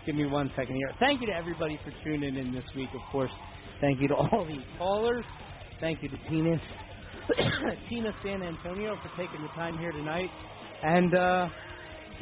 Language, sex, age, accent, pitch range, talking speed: English, male, 30-49, American, 145-195 Hz, 180 wpm